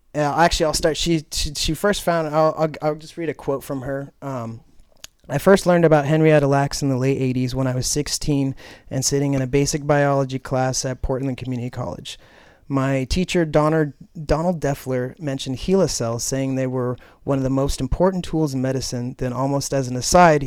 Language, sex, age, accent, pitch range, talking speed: English, male, 30-49, American, 130-145 Hz, 195 wpm